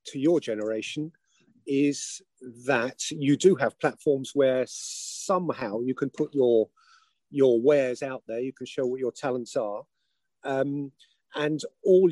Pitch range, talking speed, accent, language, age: 130-160 Hz, 145 wpm, British, English, 40-59